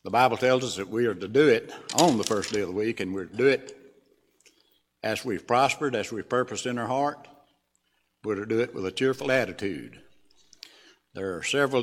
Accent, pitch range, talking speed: American, 100-125 Hz, 215 wpm